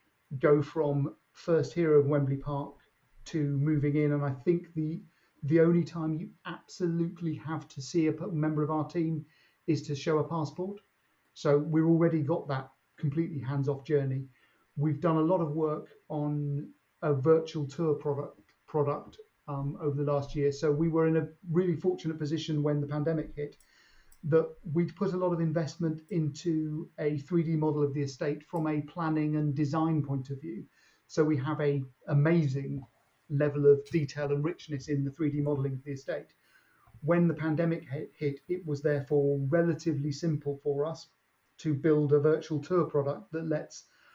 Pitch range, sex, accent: 145-160 Hz, male, British